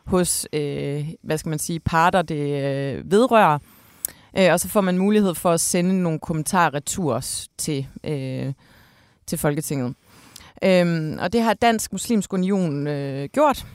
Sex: female